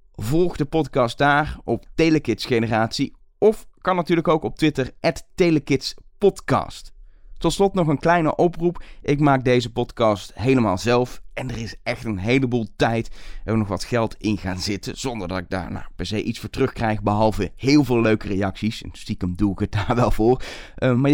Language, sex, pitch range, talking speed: Dutch, male, 100-155 Hz, 175 wpm